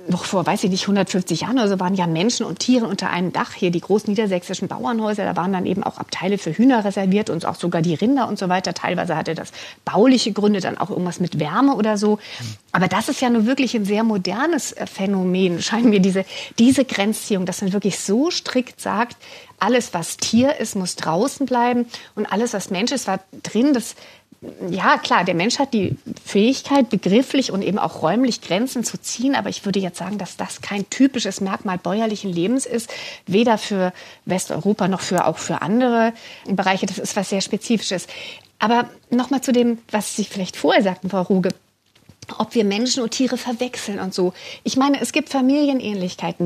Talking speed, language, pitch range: 200 wpm, German, 190-240 Hz